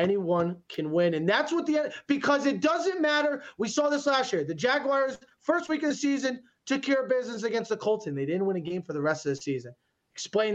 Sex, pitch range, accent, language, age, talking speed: male, 185-255 Hz, American, English, 30-49, 245 wpm